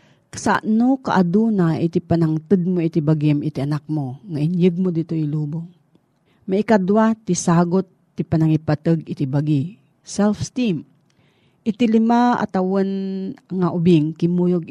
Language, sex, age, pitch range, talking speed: Filipino, female, 40-59, 155-205 Hz, 130 wpm